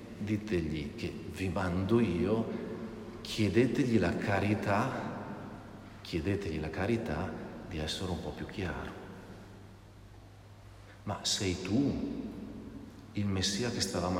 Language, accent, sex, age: Italian, native, male, 50-69